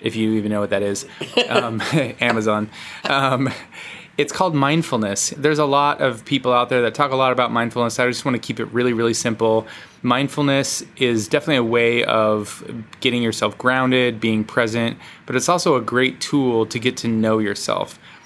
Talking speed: 185 wpm